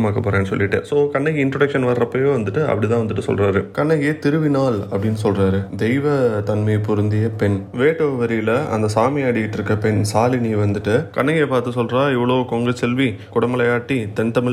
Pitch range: 105-135 Hz